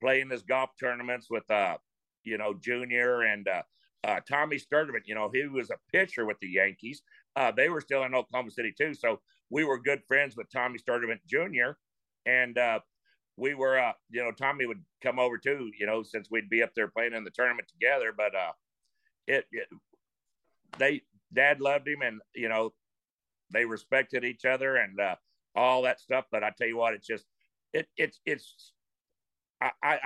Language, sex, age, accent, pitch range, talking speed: English, male, 50-69, American, 115-145 Hz, 190 wpm